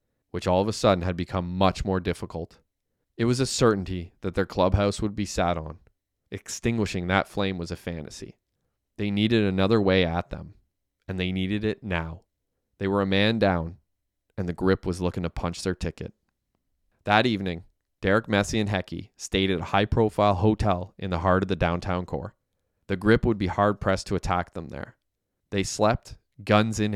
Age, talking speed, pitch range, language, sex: 20-39, 185 wpm, 90-105 Hz, English, male